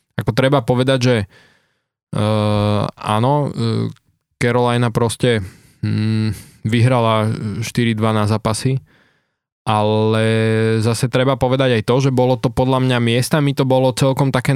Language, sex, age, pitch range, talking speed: Slovak, male, 20-39, 110-125 Hz, 125 wpm